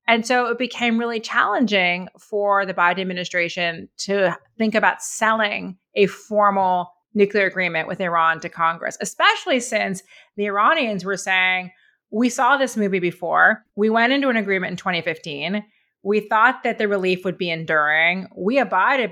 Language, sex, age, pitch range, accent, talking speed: English, female, 30-49, 185-225 Hz, American, 155 wpm